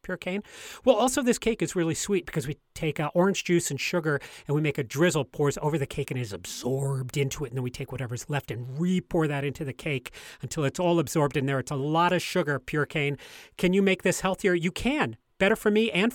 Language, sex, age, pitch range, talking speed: English, male, 40-59, 135-200 Hz, 255 wpm